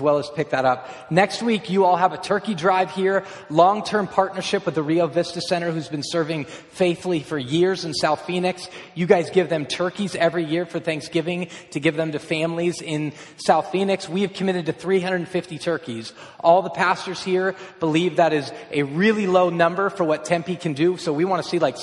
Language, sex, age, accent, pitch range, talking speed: English, male, 20-39, American, 155-185 Hz, 205 wpm